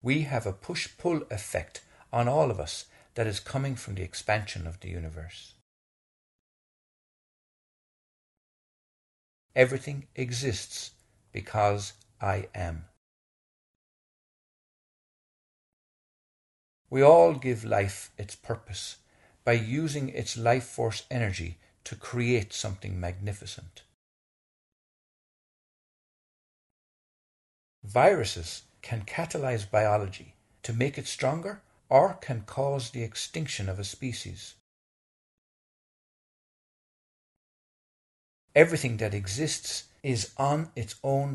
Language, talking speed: English, 90 wpm